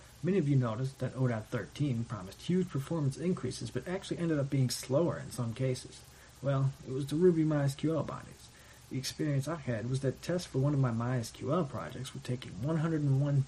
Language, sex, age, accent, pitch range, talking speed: English, male, 40-59, American, 120-145 Hz, 190 wpm